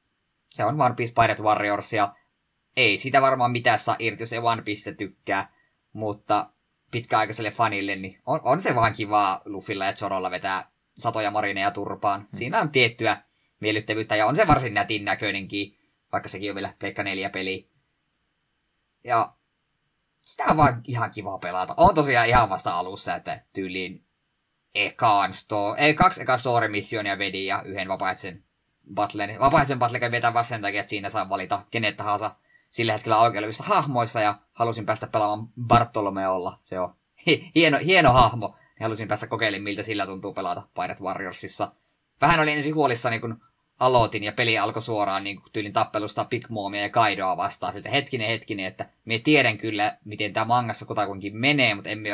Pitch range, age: 100-115 Hz, 20-39